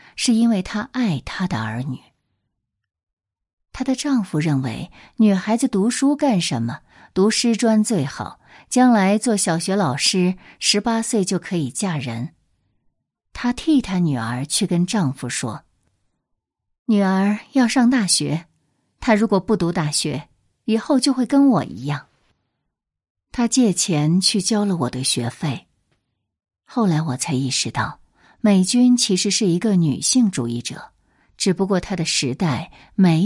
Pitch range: 130-220 Hz